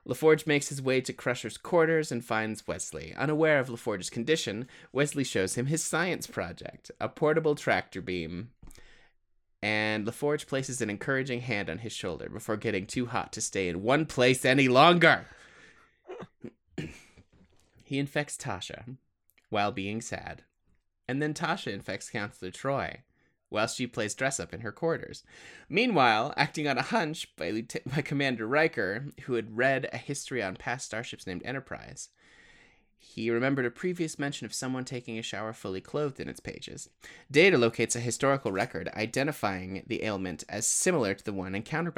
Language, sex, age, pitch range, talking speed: English, male, 20-39, 105-145 Hz, 160 wpm